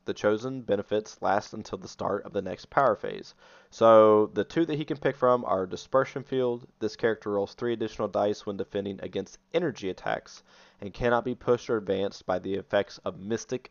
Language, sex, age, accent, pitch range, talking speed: English, male, 20-39, American, 100-125 Hz, 195 wpm